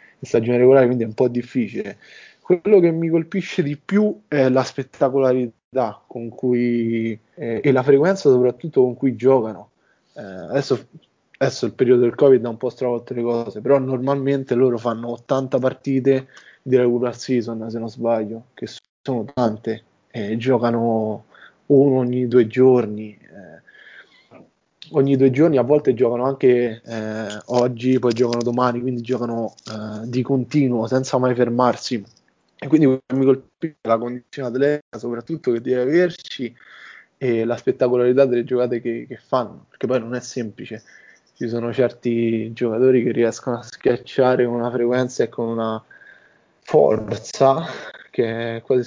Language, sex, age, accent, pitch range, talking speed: Italian, male, 20-39, native, 115-130 Hz, 150 wpm